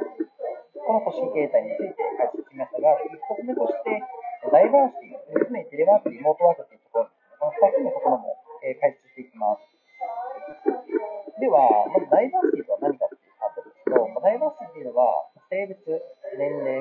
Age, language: 40-59, Japanese